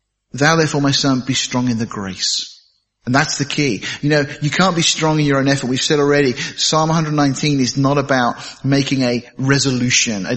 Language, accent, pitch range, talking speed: English, British, 115-140 Hz, 205 wpm